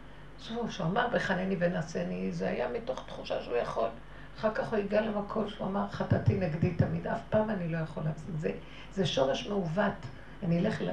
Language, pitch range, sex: Hebrew, 170-245 Hz, female